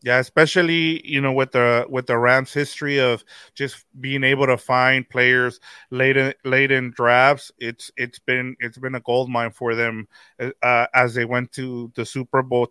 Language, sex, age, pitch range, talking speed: English, male, 30-49, 120-135 Hz, 190 wpm